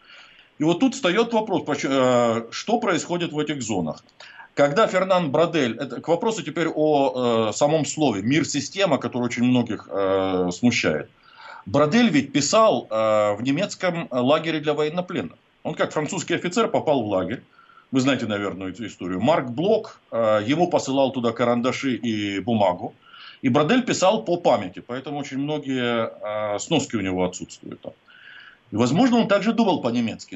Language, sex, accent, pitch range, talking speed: Russian, male, native, 115-170 Hz, 150 wpm